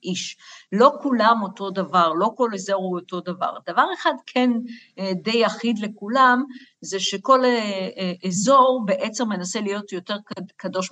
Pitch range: 190-255 Hz